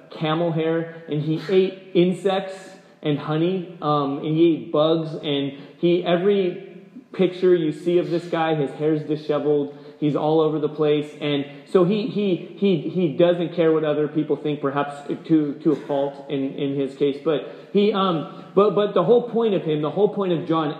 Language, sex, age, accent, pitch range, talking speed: English, male, 30-49, American, 150-180 Hz, 190 wpm